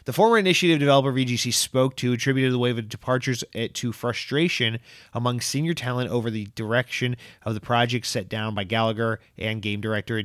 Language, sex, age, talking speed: English, male, 30-49, 175 wpm